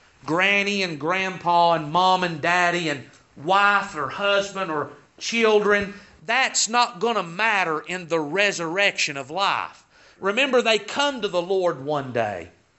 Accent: American